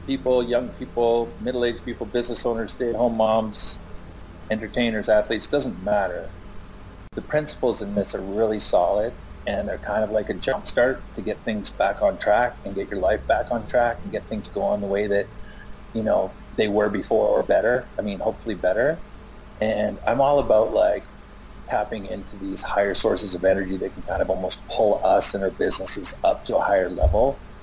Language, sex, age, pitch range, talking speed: English, male, 40-59, 105-120 Hz, 190 wpm